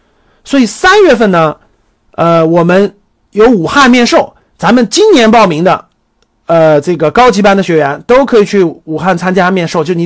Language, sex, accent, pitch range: Chinese, male, native, 175-250 Hz